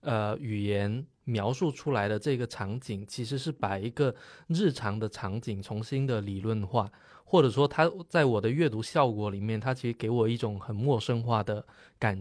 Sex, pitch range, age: male, 110-140 Hz, 20-39